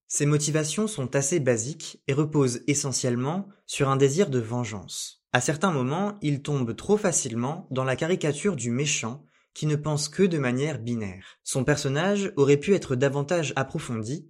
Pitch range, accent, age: 125-170 Hz, French, 20-39